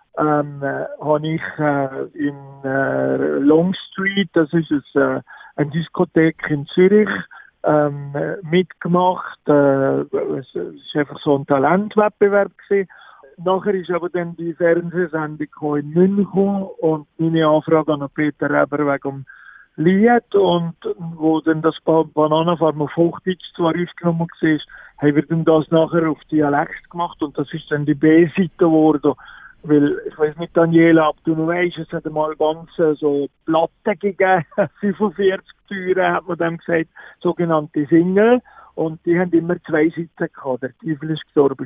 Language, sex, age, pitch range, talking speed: German, male, 50-69, 150-180 Hz, 150 wpm